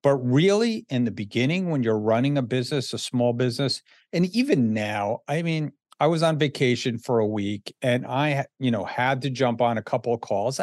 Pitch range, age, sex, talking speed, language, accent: 115-145 Hz, 50-69, male, 210 wpm, English, American